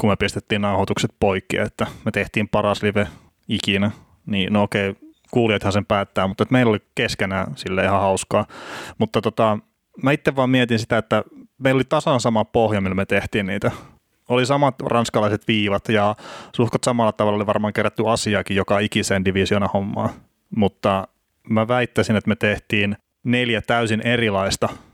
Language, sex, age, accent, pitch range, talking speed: Finnish, male, 30-49, native, 100-120 Hz, 160 wpm